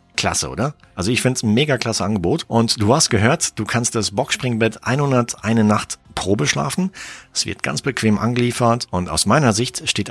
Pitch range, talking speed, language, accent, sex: 95-120 Hz, 190 wpm, German, German, male